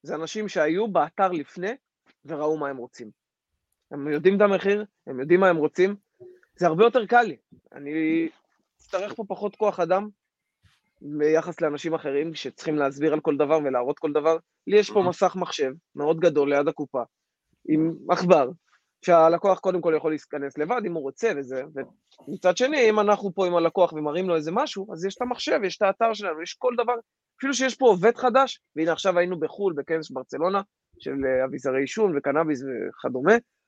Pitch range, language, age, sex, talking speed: 155-215 Hz, Hebrew, 20-39, male, 175 wpm